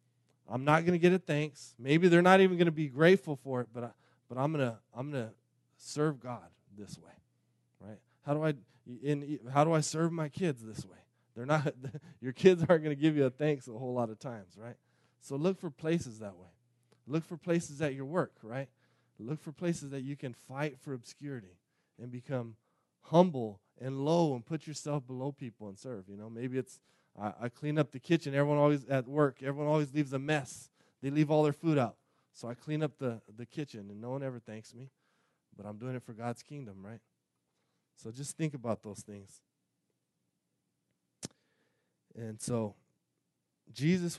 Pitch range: 115-150 Hz